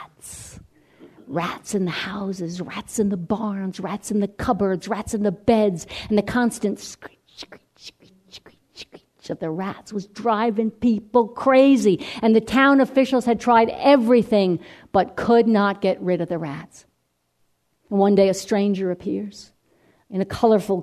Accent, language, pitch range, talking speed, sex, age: American, English, 195-230 Hz, 160 wpm, female, 50-69